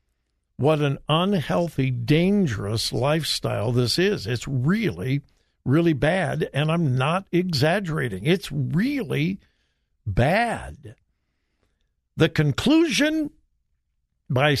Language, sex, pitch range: English, male, 130-175 Hz